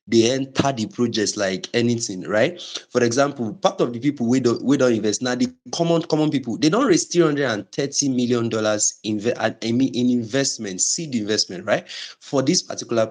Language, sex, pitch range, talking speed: English, male, 110-150 Hz, 170 wpm